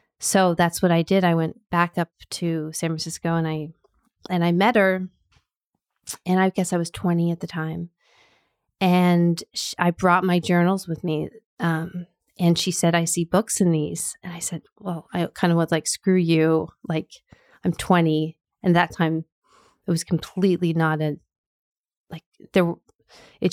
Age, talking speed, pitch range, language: 30-49, 180 wpm, 165-190 Hz, English